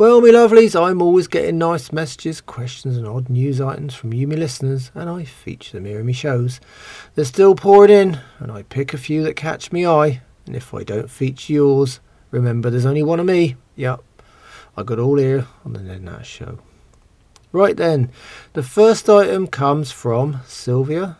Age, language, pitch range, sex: 40-59, English, 115-160 Hz, male